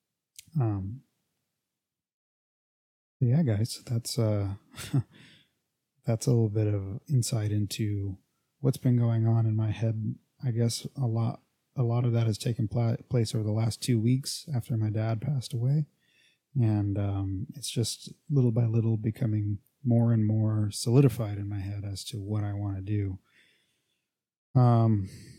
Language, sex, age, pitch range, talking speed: English, male, 20-39, 110-130 Hz, 150 wpm